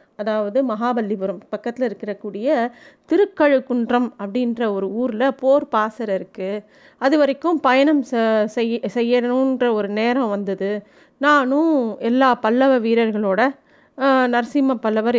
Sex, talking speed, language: female, 105 wpm, Tamil